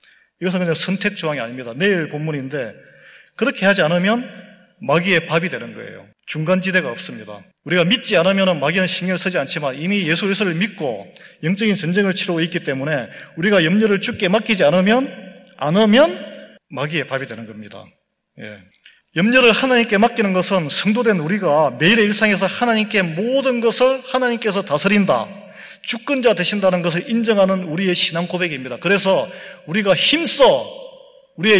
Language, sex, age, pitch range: Korean, male, 30-49, 160-210 Hz